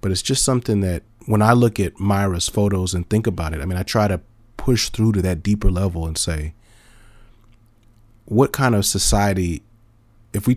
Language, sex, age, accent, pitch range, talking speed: English, male, 30-49, American, 90-110 Hz, 195 wpm